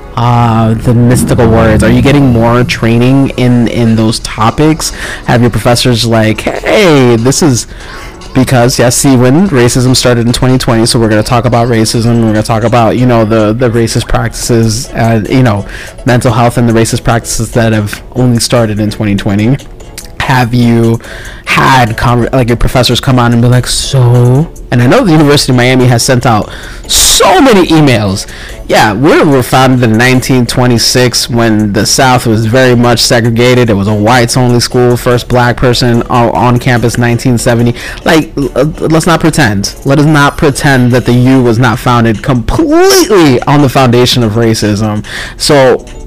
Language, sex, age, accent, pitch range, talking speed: English, male, 20-39, American, 115-130 Hz, 170 wpm